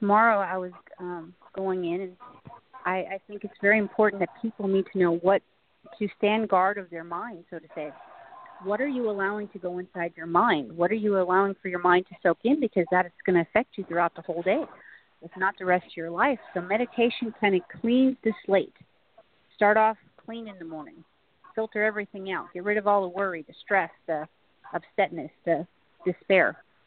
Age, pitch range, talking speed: 40-59, 175-210 Hz, 210 wpm